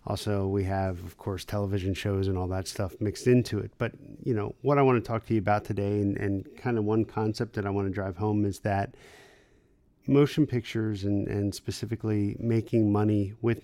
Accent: American